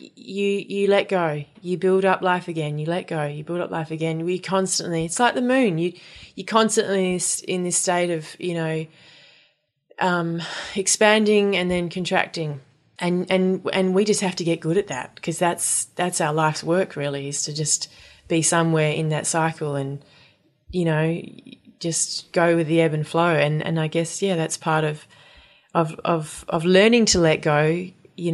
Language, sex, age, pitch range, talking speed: English, female, 20-39, 155-180 Hz, 195 wpm